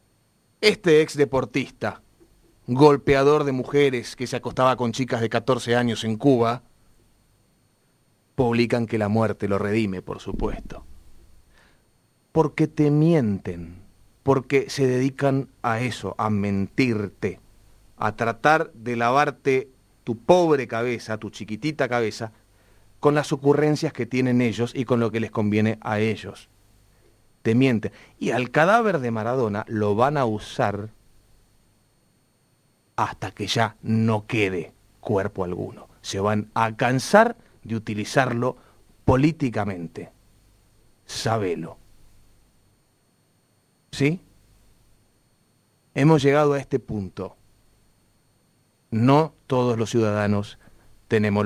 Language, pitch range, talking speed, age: Spanish, 105-130 Hz, 110 wpm, 30-49